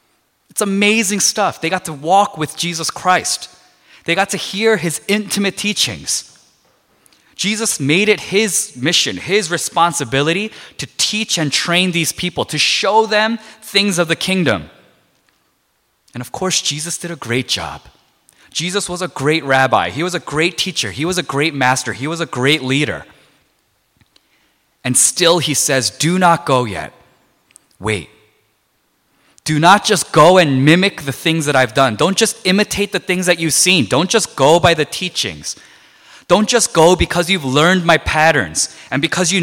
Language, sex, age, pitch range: Korean, male, 20-39, 140-185 Hz